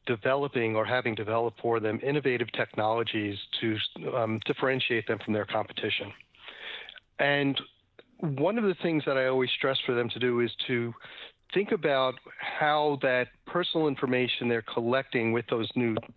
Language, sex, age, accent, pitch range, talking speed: English, male, 40-59, American, 115-140 Hz, 150 wpm